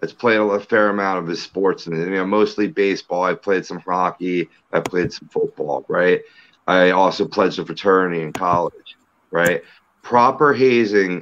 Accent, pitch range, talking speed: American, 95-110 Hz, 170 wpm